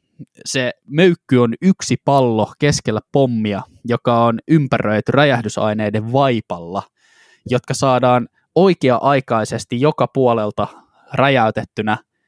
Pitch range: 110-140 Hz